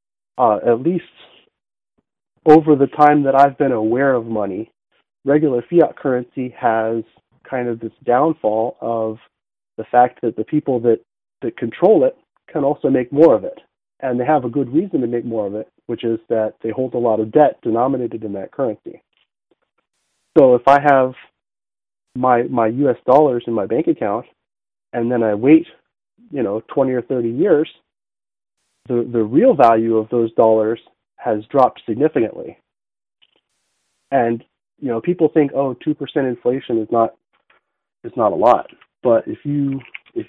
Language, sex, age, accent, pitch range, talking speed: English, male, 30-49, American, 115-145 Hz, 160 wpm